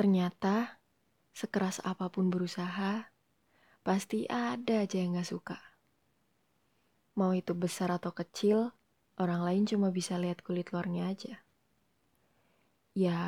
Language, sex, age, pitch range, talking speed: Indonesian, female, 20-39, 175-205 Hz, 110 wpm